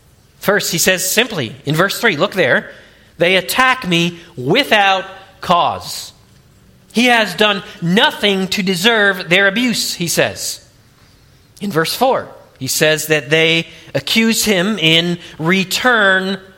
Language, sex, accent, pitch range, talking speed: English, male, American, 155-220 Hz, 125 wpm